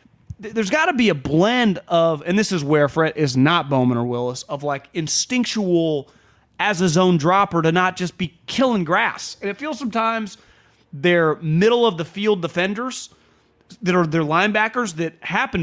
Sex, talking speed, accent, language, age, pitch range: male, 165 wpm, American, English, 30-49, 155-210 Hz